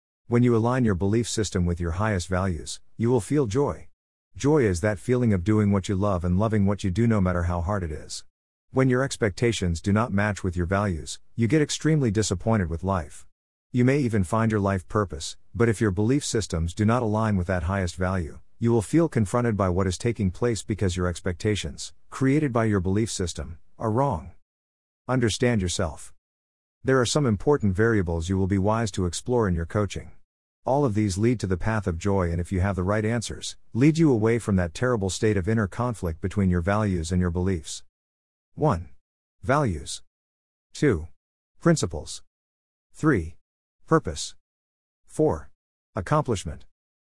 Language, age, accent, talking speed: English, 50-69, American, 180 wpm